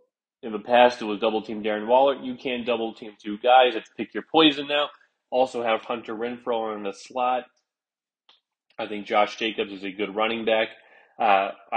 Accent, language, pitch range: American, English, 105-130 Hz